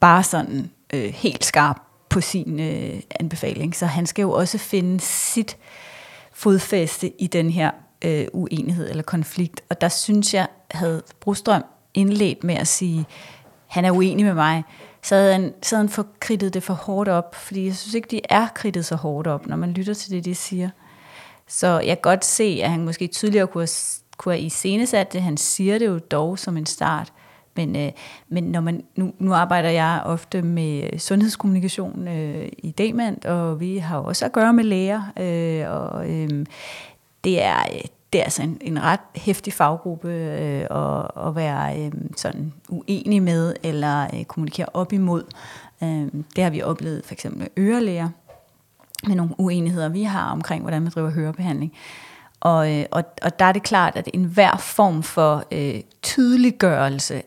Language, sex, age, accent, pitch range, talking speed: Danish, female, 30-49, native, 160-190 Hz, 175 wpm